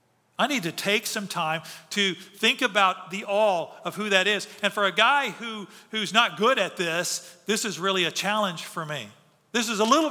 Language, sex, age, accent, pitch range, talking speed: English, male, 50-69, American, 160-210 Hz, 215 wpm